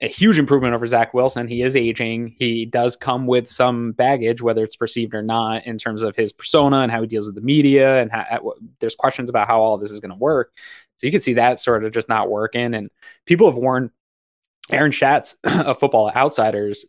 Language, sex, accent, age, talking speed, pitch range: English, male, American, 20-39, 235 wpm, 110-130 Hz